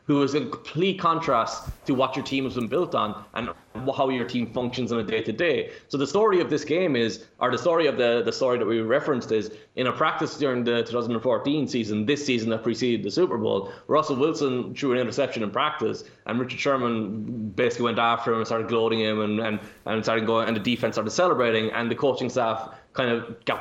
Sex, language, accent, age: male, English, Irish, 20-39